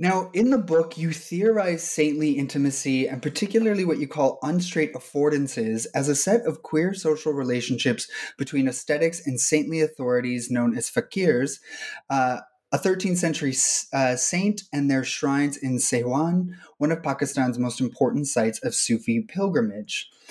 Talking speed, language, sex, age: 150 wpm, English, male, 30-49